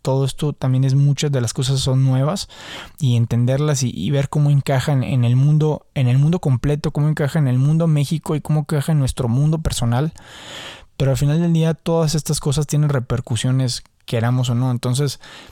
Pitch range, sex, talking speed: 125-145 Hz, male, 195 wpm